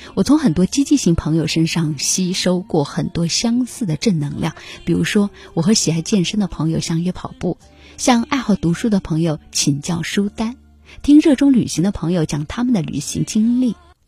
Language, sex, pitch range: Chinese, female, 155-210 Hz